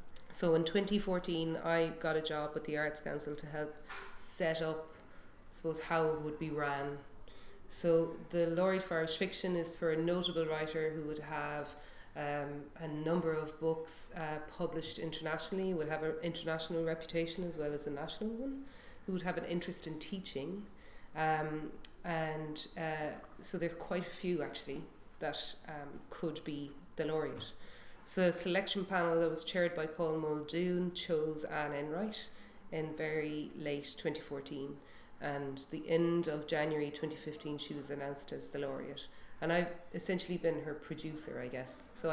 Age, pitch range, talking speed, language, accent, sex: 30-49, 150-170 Hz, 165 wpm, English, Irish, female